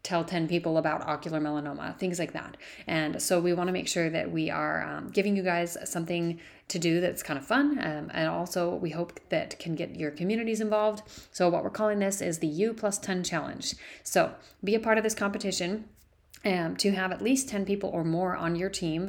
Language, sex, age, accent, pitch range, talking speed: English, female, 30-49, American, 160-185 Hz, 215 wpm